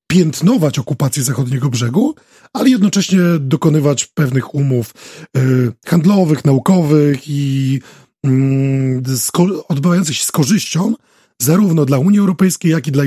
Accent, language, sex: native, Polish, male